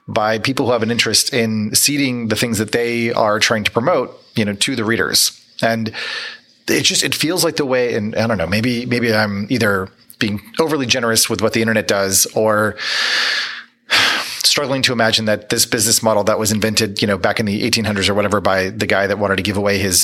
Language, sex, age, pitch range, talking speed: English, male, 30-49, 105-120 Hz, 220 wpm